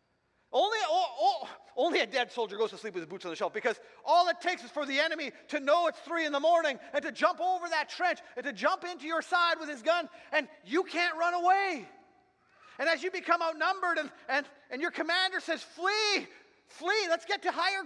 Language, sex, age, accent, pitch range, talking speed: English, male, 40-59, American, 225-350 Hz, 230 wpm